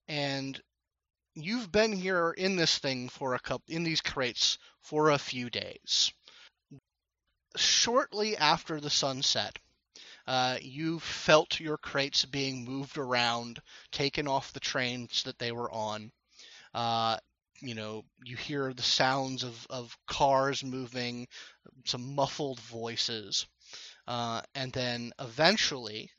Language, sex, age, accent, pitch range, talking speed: English, male, 30-49, American, 125-155 Hz, 125 wpm